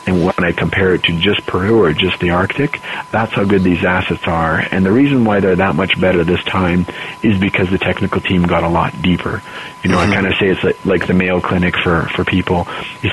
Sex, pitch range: male, 90-100 Hz